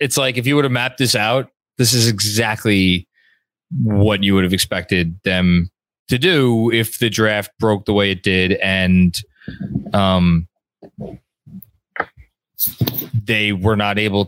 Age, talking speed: 20-39, 145 wpm